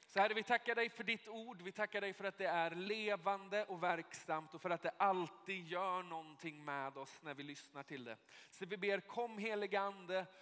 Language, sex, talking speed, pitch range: Swedish, male, 215 wpm, 155-200 Hz